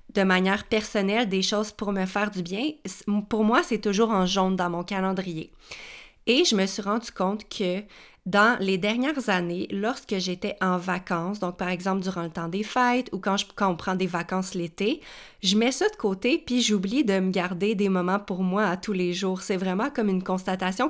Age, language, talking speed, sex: 30-49, French, 210 wpm, female